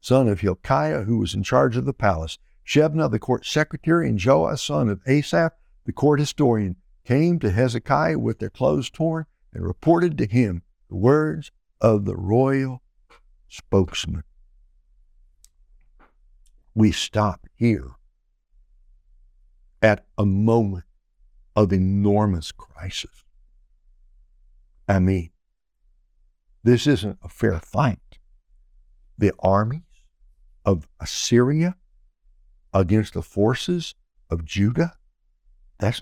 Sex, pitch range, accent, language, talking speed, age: male, 80-125 Hz, American, English, 110 wpm, 60-79